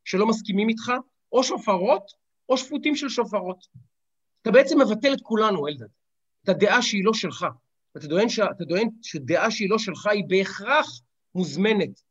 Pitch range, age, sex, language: 175-225 Hz, 40-59, male, Hebrew